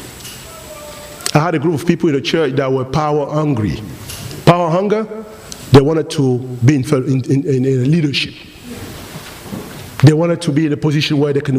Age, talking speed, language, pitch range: 50-69, 175 wpm, English, 145-240 Hz